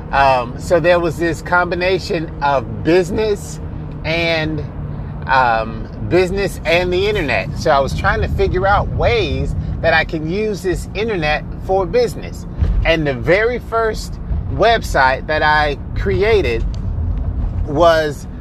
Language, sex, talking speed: English, male, 125 wpm